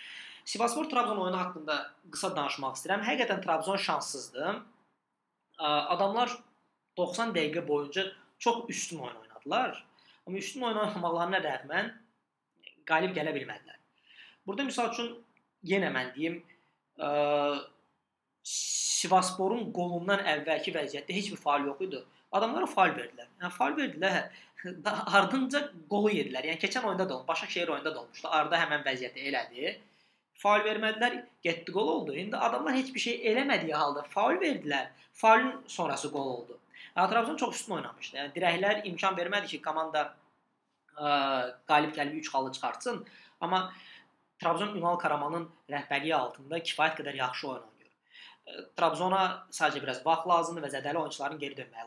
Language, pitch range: English, 150-200 Hz